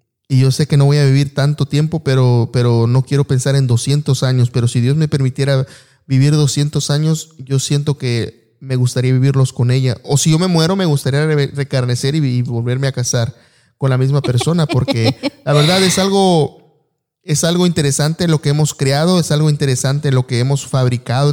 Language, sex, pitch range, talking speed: Spanish, male, 125-150 Hz, 195 wpm